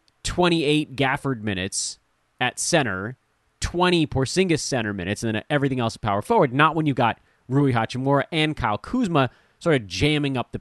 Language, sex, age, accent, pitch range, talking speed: English, male, 30-49, American, 115-160 Hz, 165 wpm